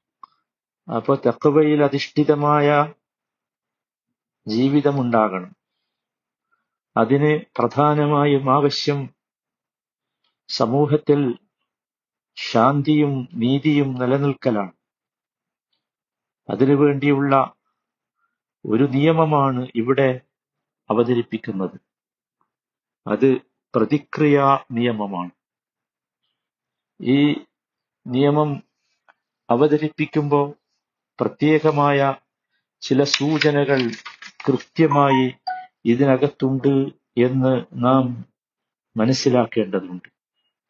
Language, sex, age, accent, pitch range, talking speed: Malayalam, male, 50-69, native, 125-150 Hz, 45 wpm